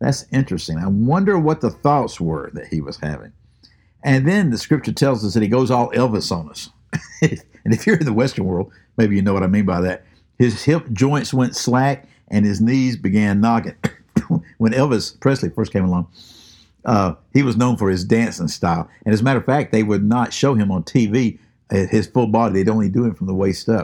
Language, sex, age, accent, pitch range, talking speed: English, male, 60-79, American, 95-120 Hz, 220 wpm